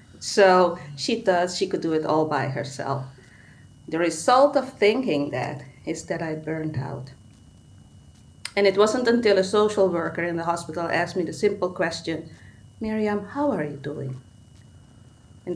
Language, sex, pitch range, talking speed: English, female, 125-185 Hz, 160 wpm